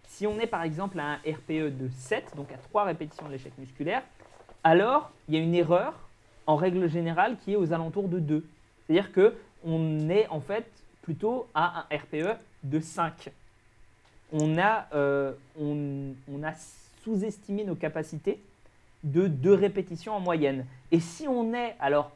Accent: French